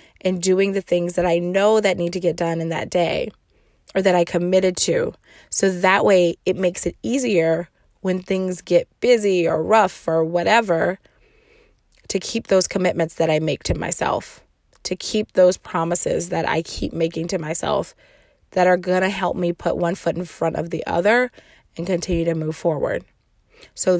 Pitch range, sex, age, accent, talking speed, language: 170-200 Hz, female, 20-39, American, 185 wpm, English